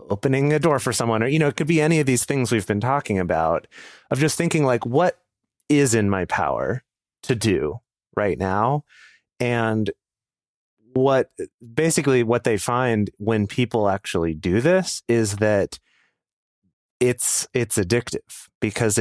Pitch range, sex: 105-140 Hz, male